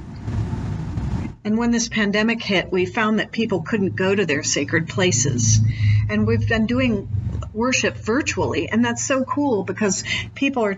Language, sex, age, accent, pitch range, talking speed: English, female, 50-69, American, 170-230 Hz, 155 wpm